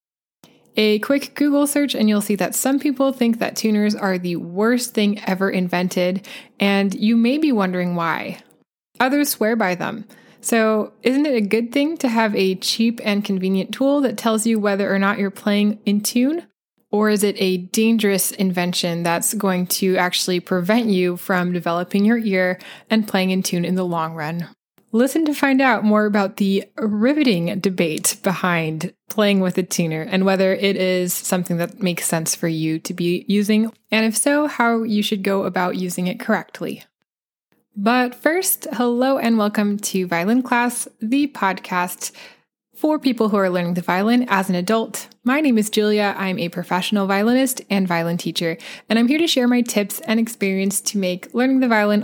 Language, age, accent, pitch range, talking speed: English, 20-39, American, 185-235 Hz, 185 wpm